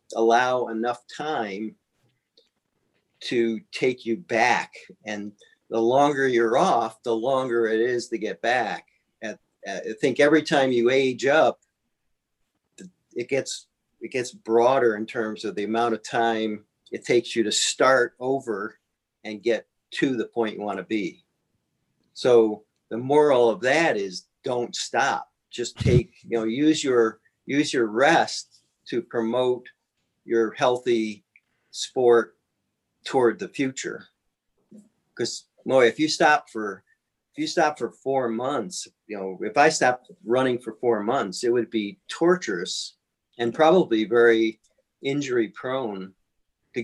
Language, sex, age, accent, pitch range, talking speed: English, male, 50-69, American, 110-130 Hz, 140 wpm